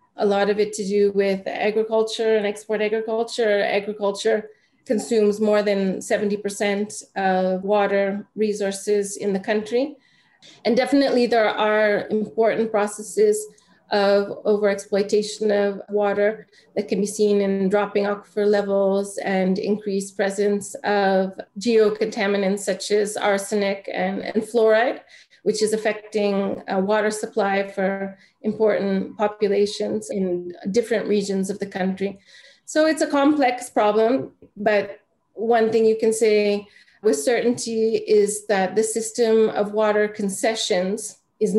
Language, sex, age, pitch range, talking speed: English, female, 30-49, 200-220 Hz, 125 wpm